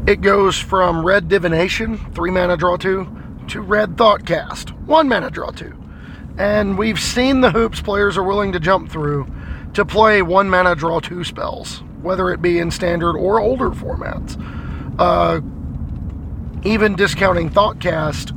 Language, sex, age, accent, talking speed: English, male, 40-59, American, 140 wpm